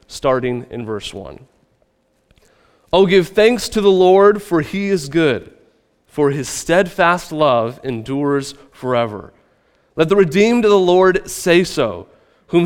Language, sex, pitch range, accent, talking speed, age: English, male, 120-180 Hz, American, 140 wpm, 30-49